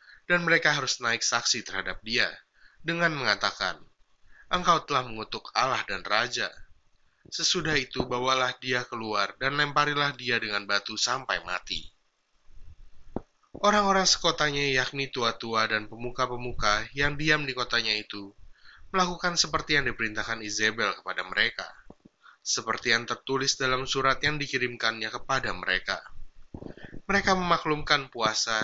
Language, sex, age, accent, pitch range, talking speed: Indonesian, male, 20-39, native, 110-145 Hz, 120 wpm